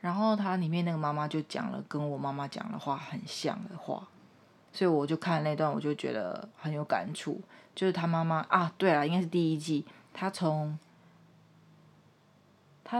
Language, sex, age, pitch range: Chinese, female, 20-39, 150-185 Hz